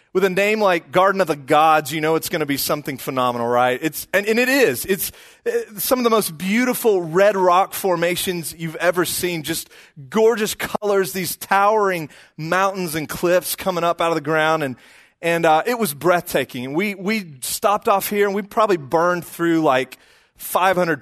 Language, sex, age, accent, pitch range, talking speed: English, male, 30-49, American, 150-200 Hz, 190 wpm